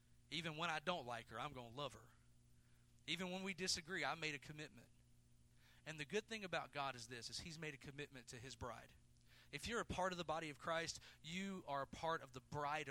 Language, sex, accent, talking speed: English, male, American, 235 wpm